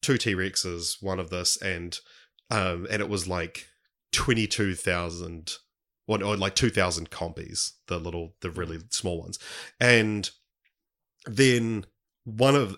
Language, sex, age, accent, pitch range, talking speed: English, male, 30-49, Australian, 95-120 Hz, 125 wpm